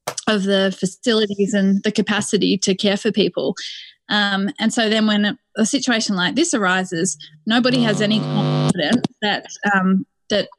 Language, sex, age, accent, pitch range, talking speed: English, female, 20-39, Australian, 190-220 Hz, 160 wpm